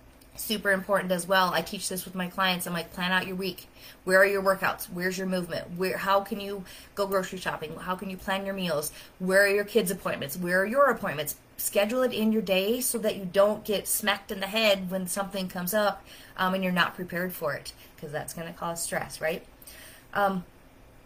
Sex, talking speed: female, 220 wpm